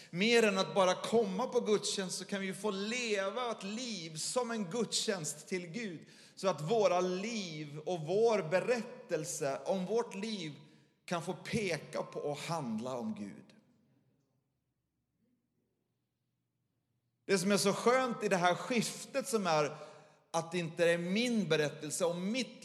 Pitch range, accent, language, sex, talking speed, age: 150-205 Hz, native, Swedish, male, 150 wpm, 30-49